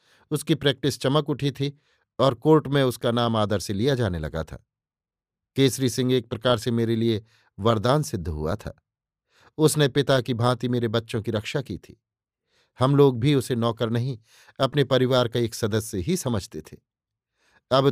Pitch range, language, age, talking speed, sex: 115-135 Hz, Hindi, 50-69, 175 wpm, male